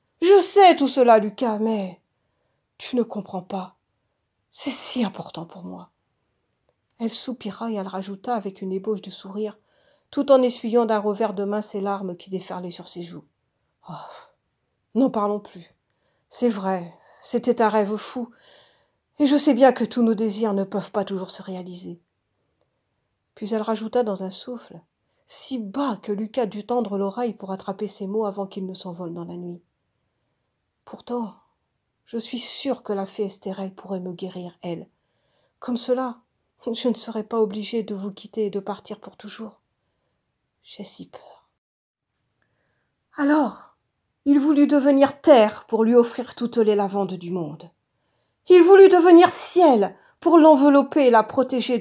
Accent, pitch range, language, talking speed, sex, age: French, 195-245 Hz, French, 165 wpm, female, 40-59